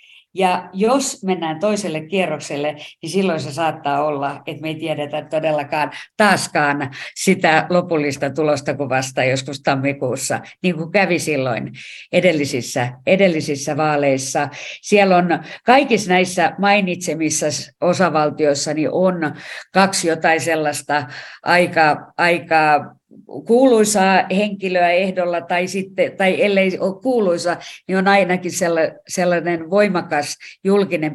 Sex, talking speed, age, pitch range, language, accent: female, 110 wpm, 50-69, 155-190 Hz, Finnish, native